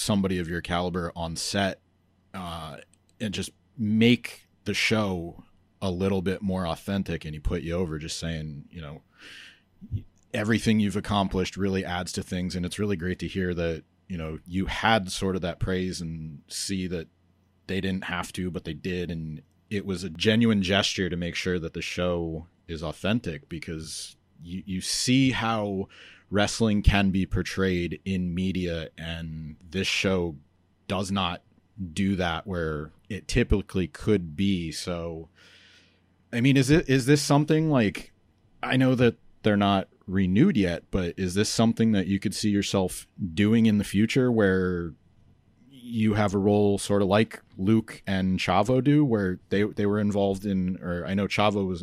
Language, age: English, 30-49